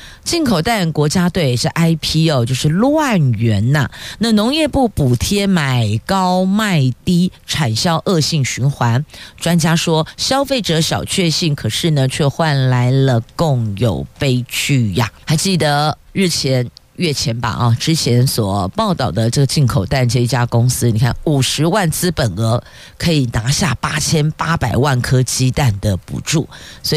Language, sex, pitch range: Chinese, female, 120-165 Hz